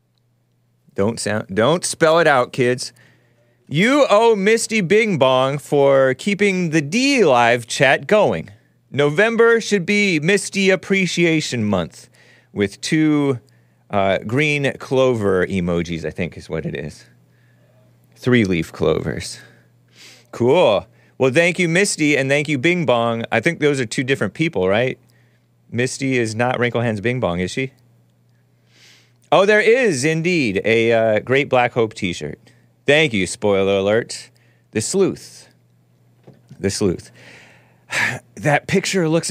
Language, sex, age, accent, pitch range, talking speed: English, male, 30-49, American, 95-160 Hz, 135 wpm